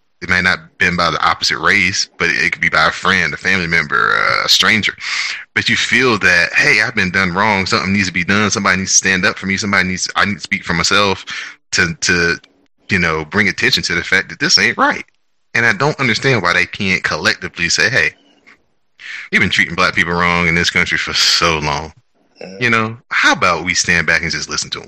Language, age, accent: English, 30-49, American